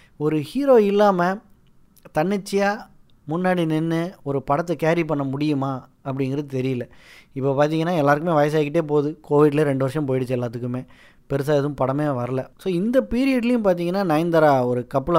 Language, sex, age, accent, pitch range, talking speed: Tamil, male, 20-39, native, 135-165 Hz, 135 wpm